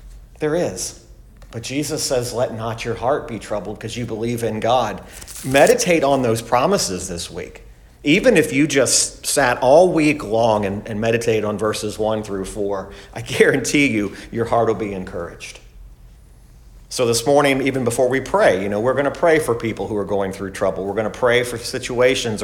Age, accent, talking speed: 40-59, American, 195 wpm